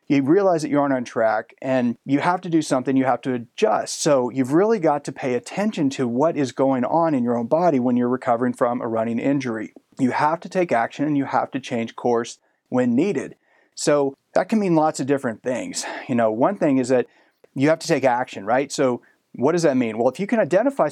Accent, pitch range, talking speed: American, 125-160 Hz, 240 wpm